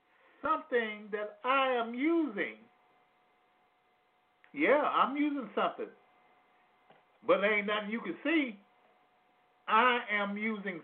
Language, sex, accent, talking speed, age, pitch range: English, male, American, 100 wpm, 50-69, 205-295 Hz